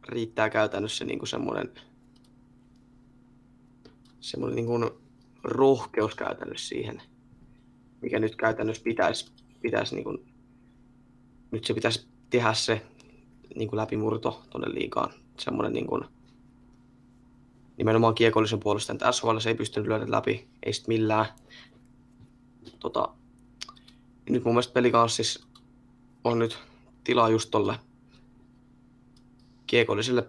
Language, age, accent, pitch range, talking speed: Finnish, 20-39, native, 115-125 Hz, 100 wpm